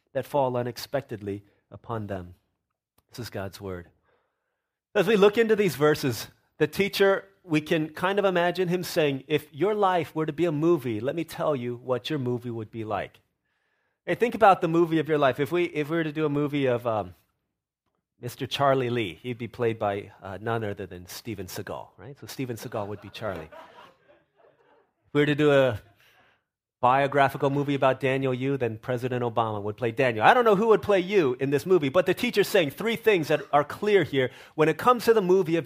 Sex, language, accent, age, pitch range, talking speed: male, English, American, 30-49, 120-165 Hz, 210 wpm